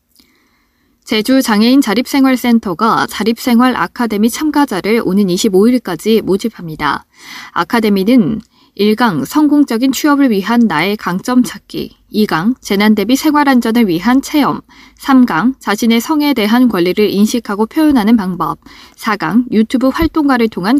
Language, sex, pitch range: Korean, female, 205-255 Hz